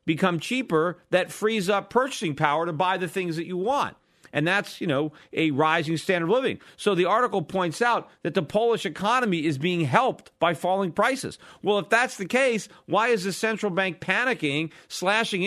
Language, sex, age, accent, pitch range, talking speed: English, male, 40-59, American, 160-215 Hz, 195 wpm